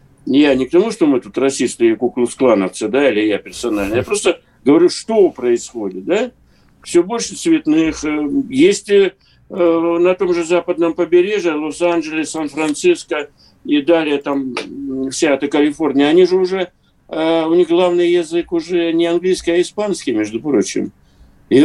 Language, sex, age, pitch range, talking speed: Russian, male, 60-79, 145-240 Hz, 140 wpm